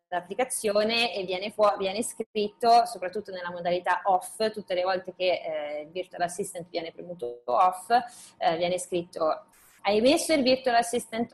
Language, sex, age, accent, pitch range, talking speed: Italian, female, 20-39, native, 180-225 Hz, 155 wpm